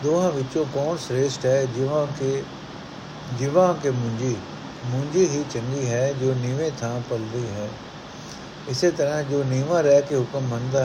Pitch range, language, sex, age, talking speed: 125-145 Hz, Punjabi, male, 60-79, 150 wpm